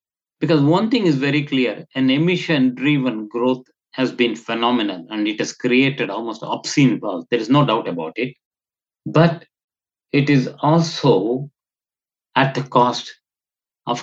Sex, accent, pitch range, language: male, Indian, 115-145 Hz, English